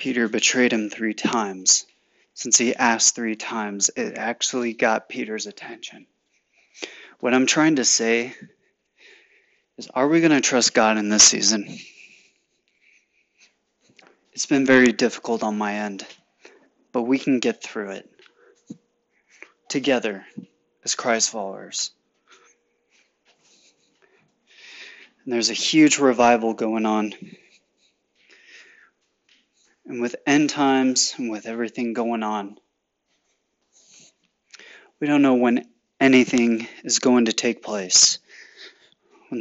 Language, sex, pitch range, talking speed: English, male, 110-130 Hz, 115 wpm